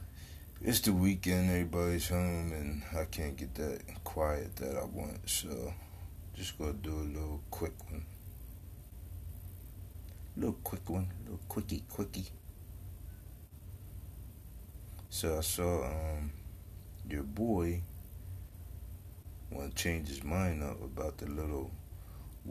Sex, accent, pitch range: male, American, 80-95 Hz